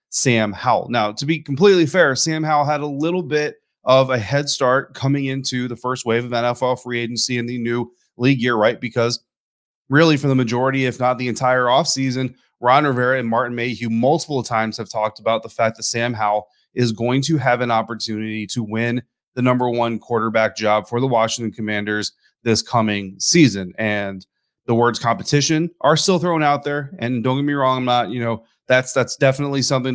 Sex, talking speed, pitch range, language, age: male, 200 wpm, 115-135 Hz, English, 30-49